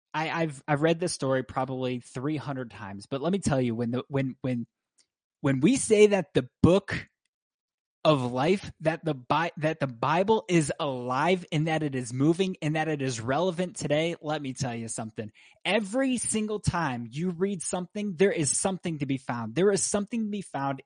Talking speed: 195 wpm